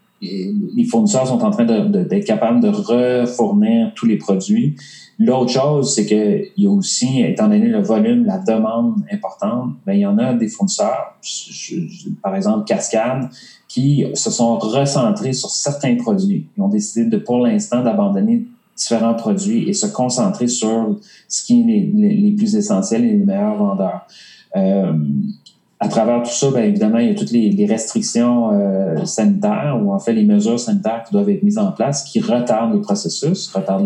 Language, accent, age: English, Canadian, 30-49